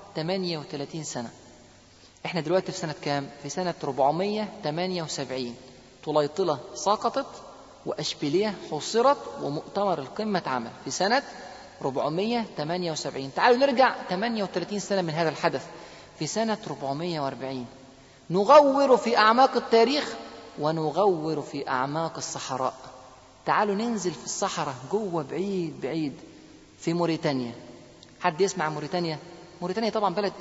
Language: Arabic